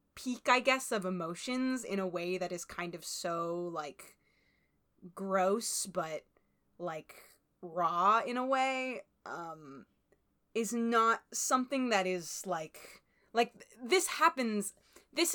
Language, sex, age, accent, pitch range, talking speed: English, female, 20-39, American, 175-220 Hz, 125 wpm